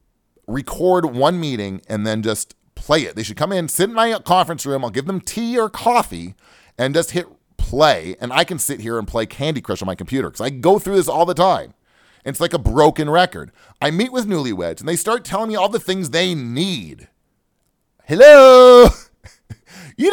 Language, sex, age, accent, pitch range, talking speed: English, male, 30-49, American, 135-215 Hz, 205 wpm